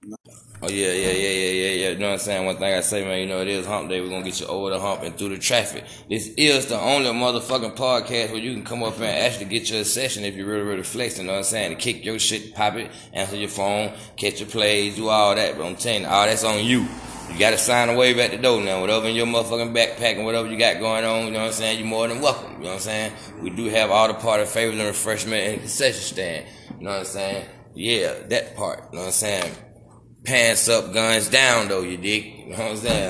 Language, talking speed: English, 285 wpm